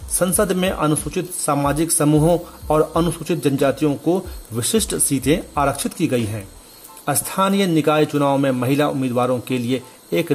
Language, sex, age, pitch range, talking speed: Hindi, male, 40-59, 130-165 Hz, 140 wpm